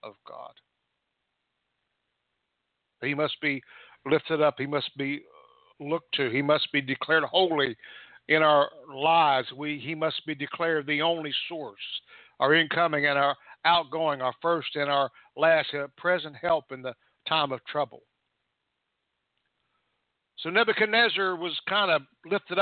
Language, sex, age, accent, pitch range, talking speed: English, male, 60-79, American, 145-180 Hz, 140 wpm